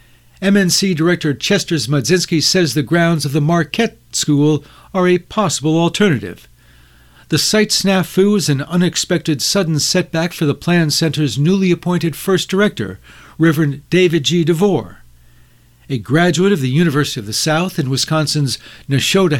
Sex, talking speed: male, 140 wpm